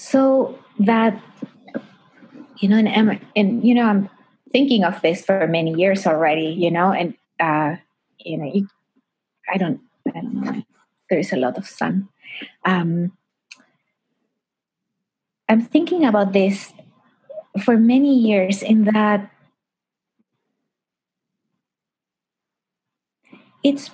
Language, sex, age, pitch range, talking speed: English, female, 20-39, 200-255 Hz, 115 wpm